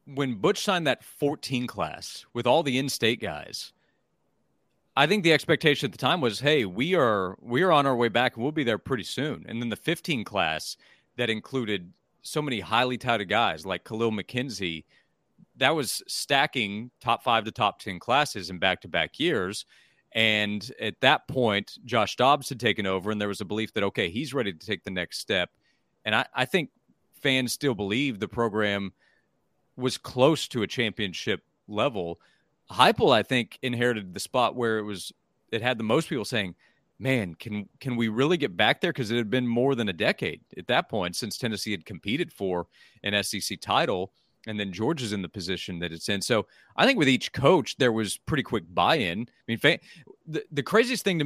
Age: 40-59